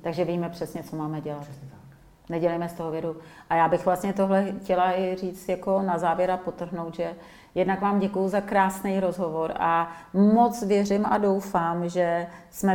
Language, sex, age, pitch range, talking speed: Czech, female, 30-49, 170-195 Hz, 175 wpm